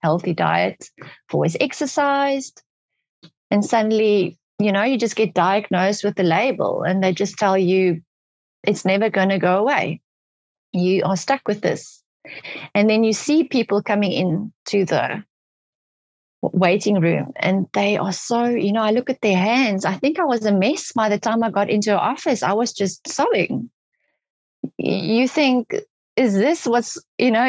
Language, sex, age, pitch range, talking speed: English, female, 30-49, 195-245 Hz, 170 wpm